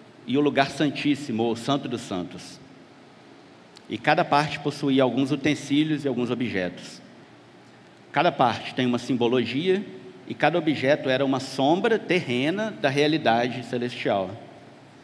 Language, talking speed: Portuguese, 130 wpm